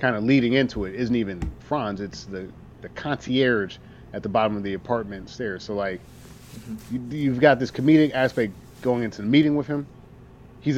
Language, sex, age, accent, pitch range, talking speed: English, male, 30-49, American, 110-135 Hz, 185 wpm